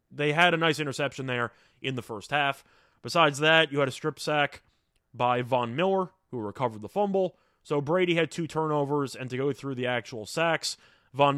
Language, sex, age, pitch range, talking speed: English, male, 20-39, 120-155 Hz, 195 wpm